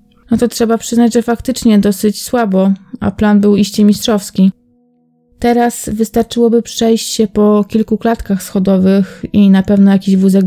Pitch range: 190-225 Hz